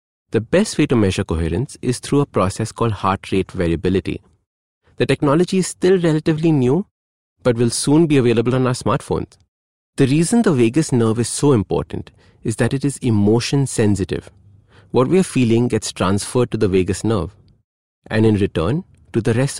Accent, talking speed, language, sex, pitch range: Indian, 180 wpm, English, male, 95-135 Hz